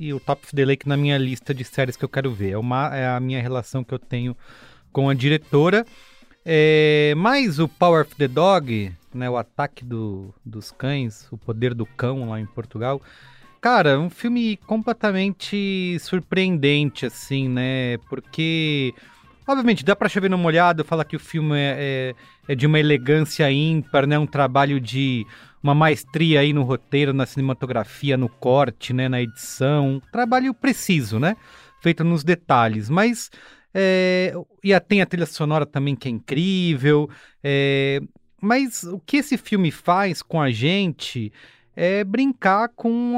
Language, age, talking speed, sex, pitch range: English, 30-49, 165 wpm, male, 130-175 Hz